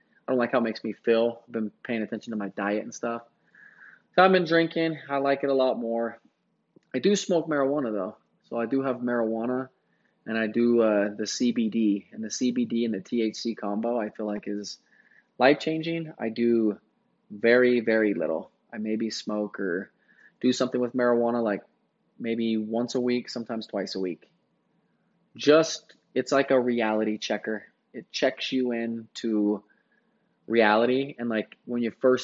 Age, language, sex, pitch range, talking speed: 20-39, English, male, 105-125 Hz, 175 wpm